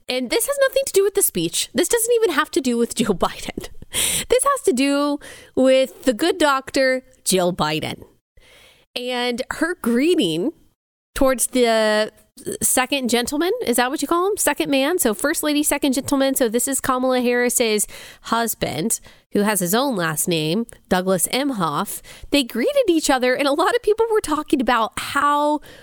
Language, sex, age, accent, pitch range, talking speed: English, female, 20-39, American, 215-295 Hz, 175 wpm